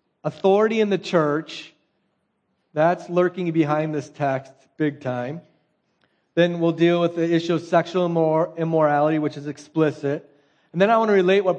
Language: English